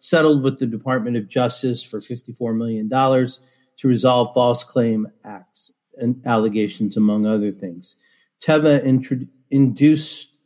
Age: 40-59